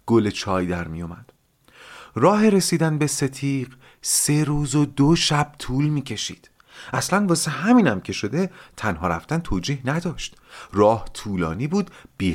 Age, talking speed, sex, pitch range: 40-59, 140 wpm, male, 105-165 Hz